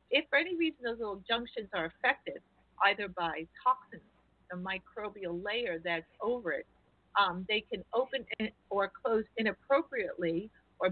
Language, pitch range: English, 180-250 Hz